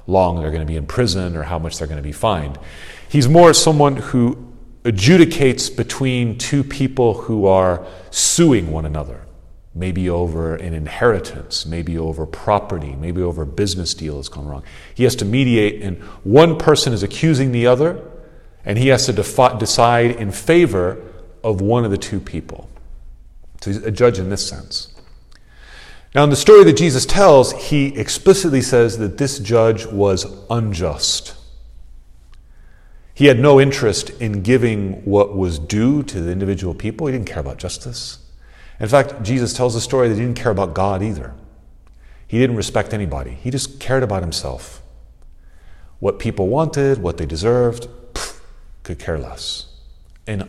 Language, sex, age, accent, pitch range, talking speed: English, male, 40-59, American, 80-125 Hz, 165 wpm